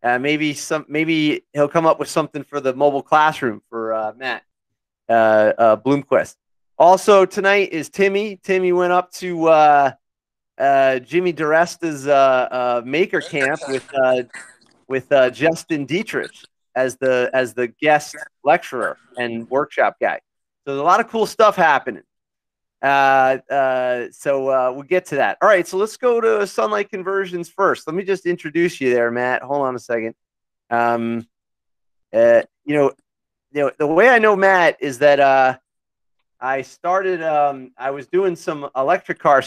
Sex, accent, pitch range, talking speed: male, American, 130-175 Hz, 165 wpm